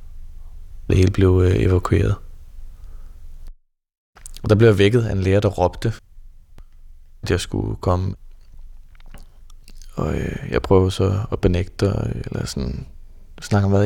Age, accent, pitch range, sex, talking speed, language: 20-39, native, 75-100 Hz, male, 140 wpm, Danish